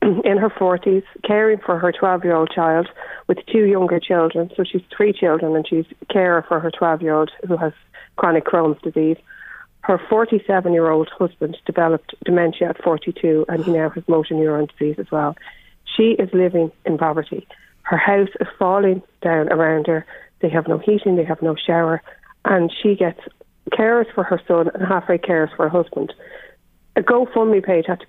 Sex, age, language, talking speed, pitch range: female, 30-49, English, 185 wpm, 160-190 Hz